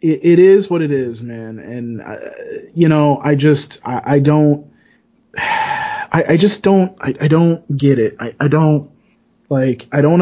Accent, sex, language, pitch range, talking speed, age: American, male, English, 135-170 Hz, 175 wpm, 20-39